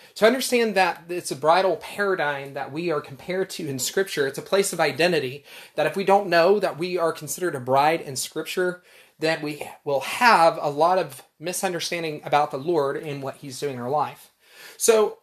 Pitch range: 145-195 Hz